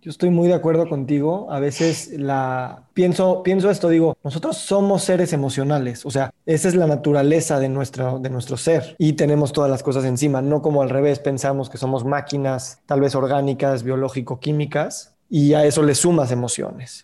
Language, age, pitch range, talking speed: Spanish, 20-39, 140-165 Hz, 185 wpm